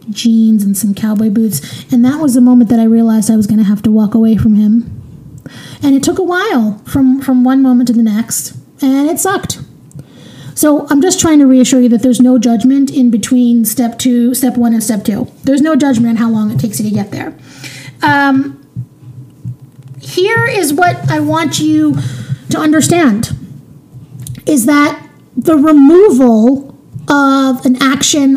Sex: female